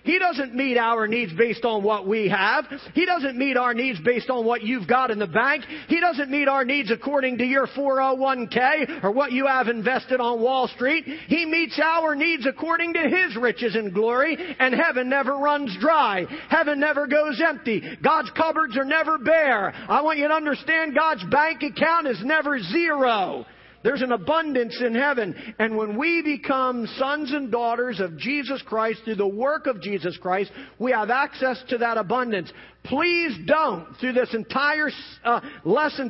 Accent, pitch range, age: American, 225-295 Hz, 40-59